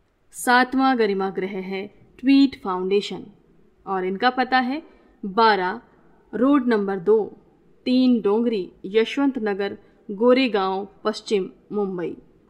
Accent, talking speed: native, 100 wpm